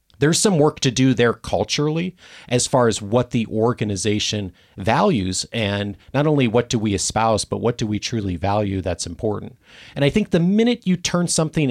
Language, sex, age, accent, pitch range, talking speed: English, male, 40-59, American, 100-145 Hz, 190 wpm